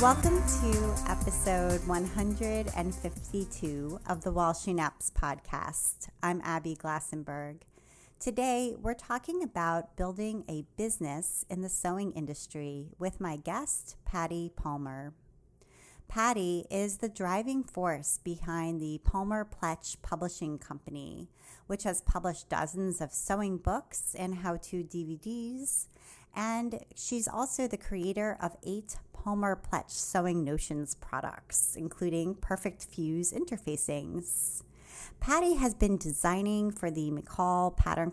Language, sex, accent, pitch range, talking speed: English, female, American, 155-200 Hz, 120 wpm